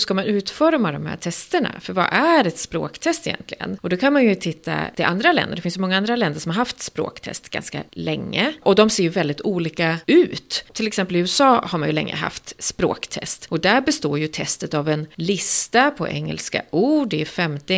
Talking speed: 215 wpm